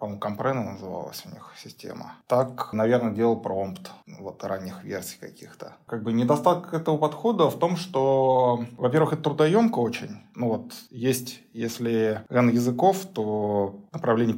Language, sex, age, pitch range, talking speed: Russian, male, 20-39, 110-140 Hz, 140 wpm